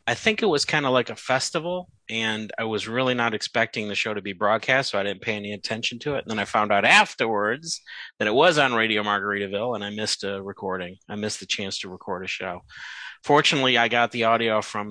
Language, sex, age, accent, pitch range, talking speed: English, male, 30-49, American, 105-125 Hz, 240 wpm